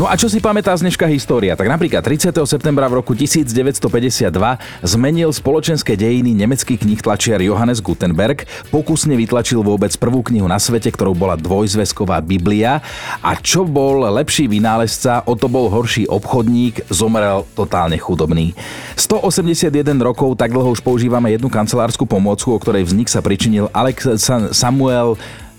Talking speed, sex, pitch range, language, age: 145 wpm, male, 100-135 Hz, Slovak, 40-59